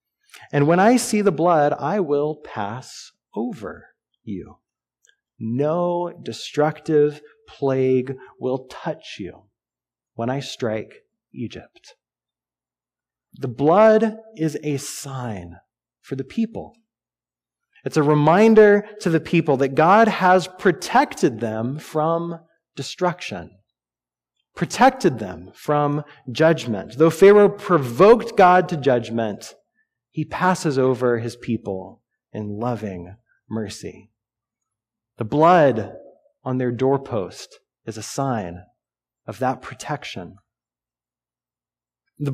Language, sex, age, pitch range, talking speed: English, male, 30-49, 115-175 Hz, 100 wpm